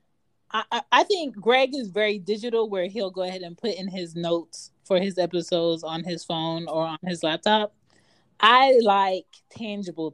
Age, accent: 20-39, American